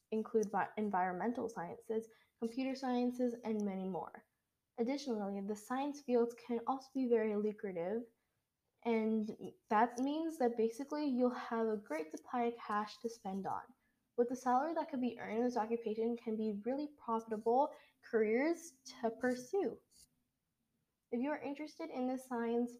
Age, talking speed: 10-29, 145 wpm